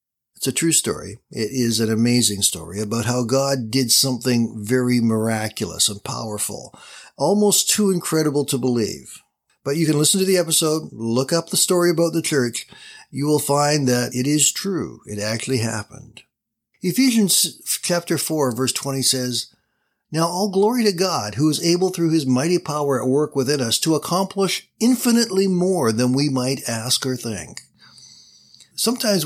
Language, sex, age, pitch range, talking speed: English, male, 60-79, 120-170 Hz, 165 wpm